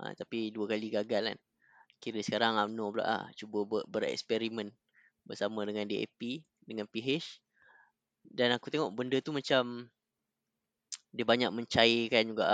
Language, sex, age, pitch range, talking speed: Malay, female, 20-39, 105-135 Hz, 140 wpm